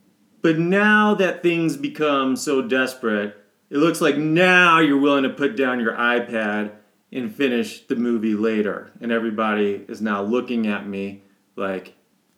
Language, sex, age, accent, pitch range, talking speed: English, male, 30-49, American, 110-145 Hz, 150 wpm